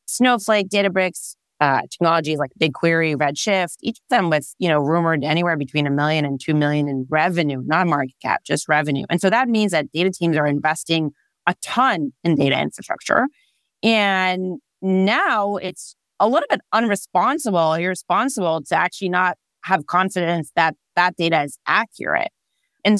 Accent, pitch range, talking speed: American, 155-195 Hz, 160 wpm